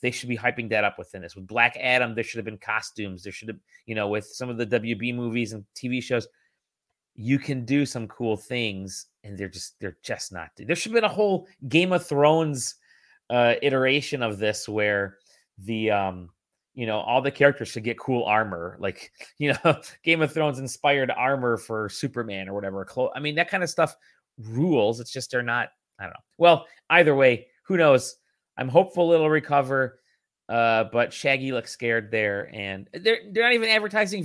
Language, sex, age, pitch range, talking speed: English, male, 30-49, 105-145 Hz, 195 wpm